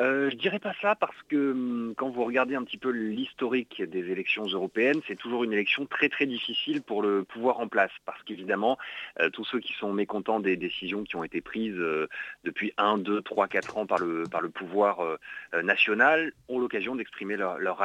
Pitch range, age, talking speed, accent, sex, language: 100-135 Hz, 30-49, 210 wpm, French, male, French